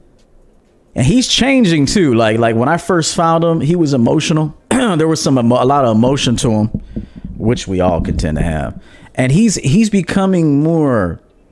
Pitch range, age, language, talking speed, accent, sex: 105-140 Hz, 40-59, English, 175 wpm, American, male